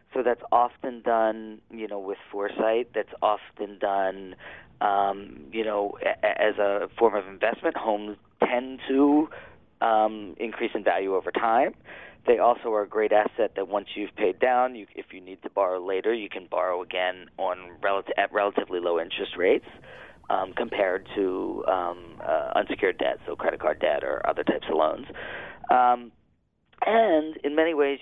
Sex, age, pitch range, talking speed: male, 40-59, 100-125 Hz, 160 wpm